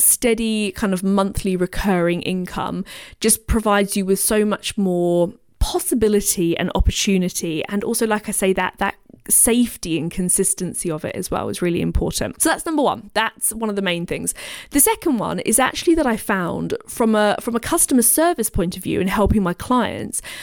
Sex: female